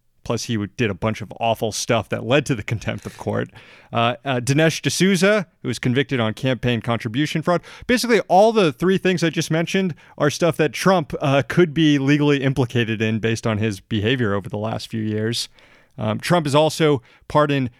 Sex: male